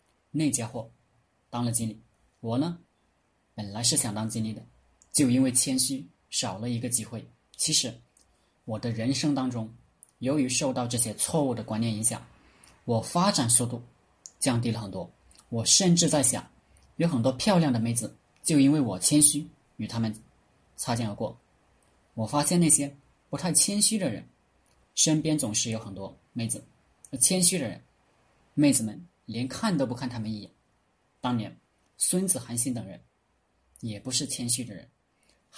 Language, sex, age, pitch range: Chinese, male, 20-39, 110-140 Hz